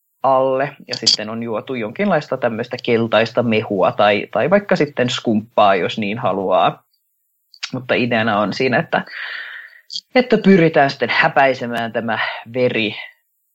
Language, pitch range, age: Finnish, 115-145 Hz, 20-39